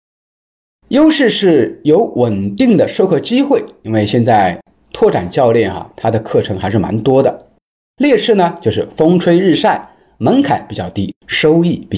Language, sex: Chinese, male